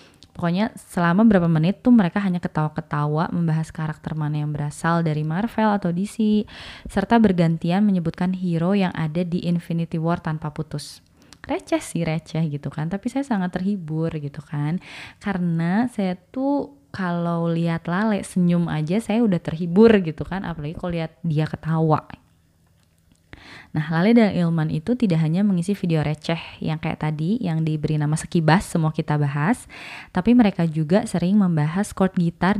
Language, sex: Indonesian, female